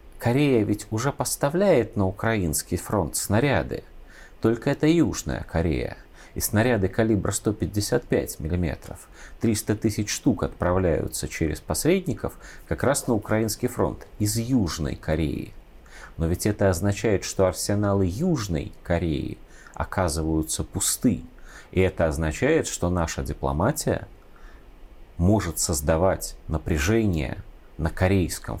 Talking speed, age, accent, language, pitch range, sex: 110 wpm, 30-49, native, Russian, 85-115 Hz, male